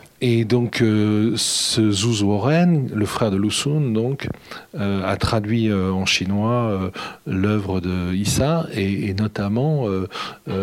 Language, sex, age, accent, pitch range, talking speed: French, male, 40-59, French, 100-120 Hz, 150 wpm